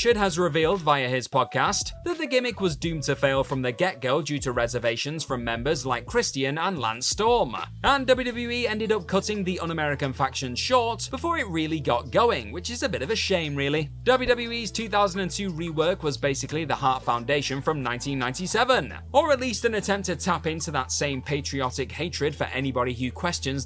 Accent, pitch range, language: British, 140-225 Hz, English